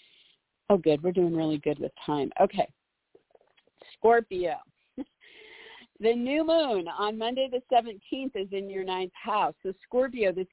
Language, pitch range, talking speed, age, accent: English, 175-225 Hz, 140 wpm, 50-69, American